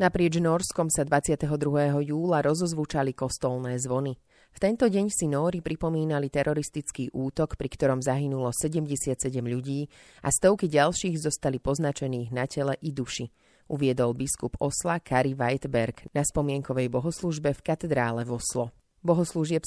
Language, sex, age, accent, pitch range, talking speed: English, female, 30-49, Czech, 130-155 Hz, 130 wpm